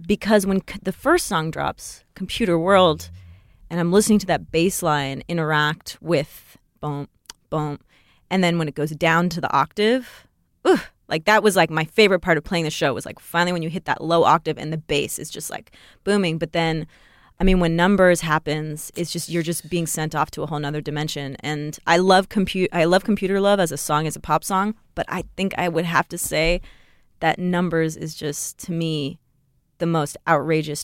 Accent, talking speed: American, 210 wpm